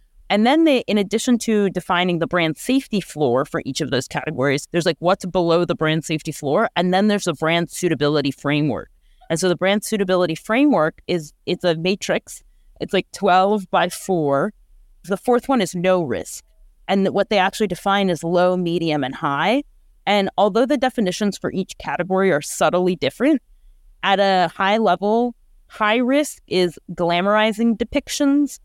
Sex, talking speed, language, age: female, 170 wpm, English, 30-49